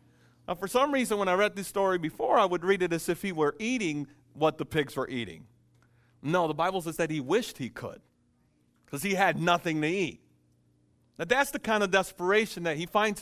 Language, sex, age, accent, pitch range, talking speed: English, male, 40-59, American, 120-180 Hz, 220 wpm